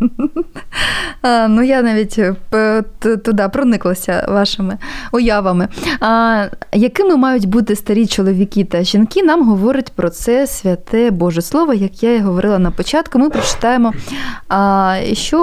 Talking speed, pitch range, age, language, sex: 120 wpm, 190-245 Hz, 20-39, Ukrainian, female